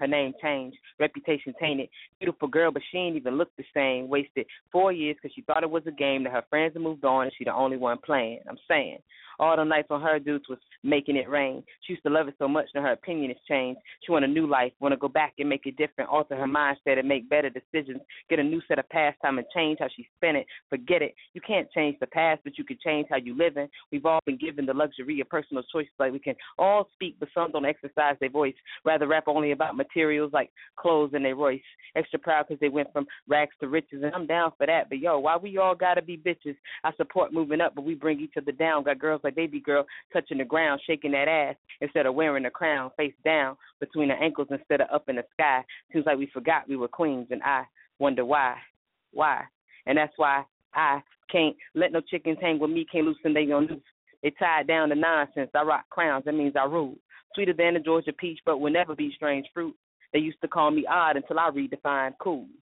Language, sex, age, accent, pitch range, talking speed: English, female, 20-39, American, 140-160 Hz, 250 wpm